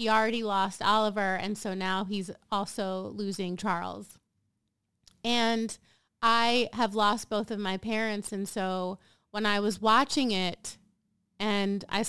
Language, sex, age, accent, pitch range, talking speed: English, female, 30-49, American, 200-235 Hz, 140 wpm